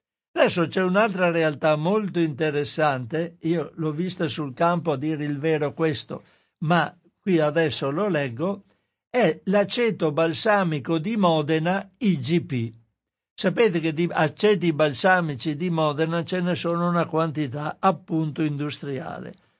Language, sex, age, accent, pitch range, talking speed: Italian, male, 60-79, native, 155-185 Hz, 125 wpm